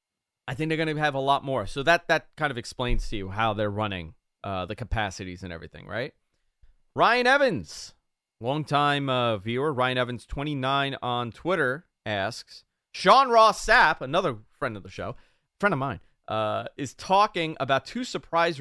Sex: male